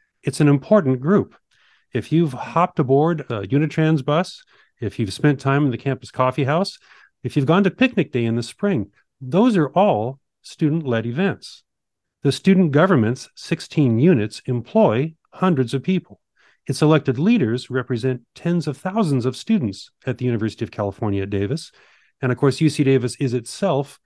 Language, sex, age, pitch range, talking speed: English, male, 40-59, 120-170 Hz, 160 wpm